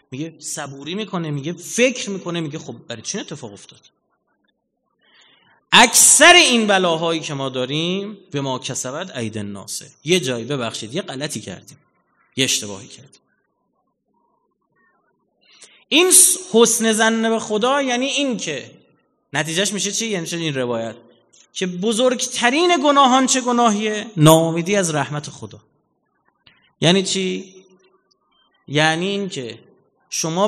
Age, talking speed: 30-49, 120 wpm